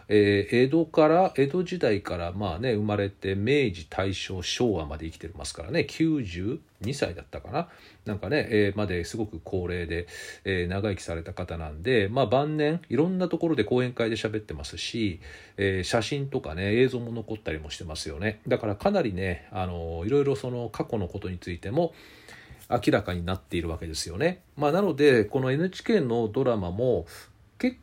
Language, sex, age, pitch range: Japanese, male, 40-59, 95-135 Hz